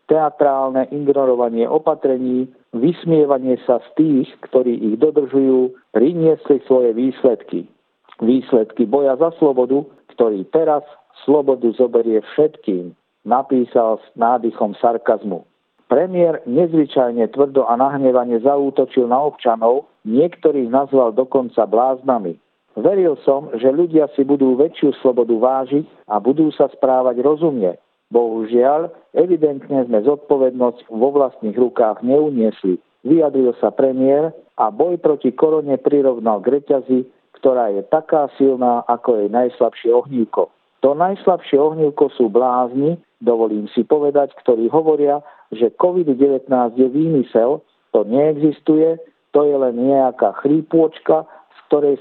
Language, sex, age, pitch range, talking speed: Slovak, male, 50-69, 125-150 Hz, 115 wpm